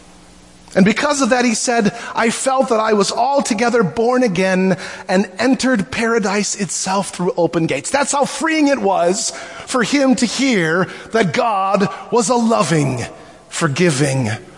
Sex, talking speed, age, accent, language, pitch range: male, 150 wpm, 30-49, American, English, 175-265 Hz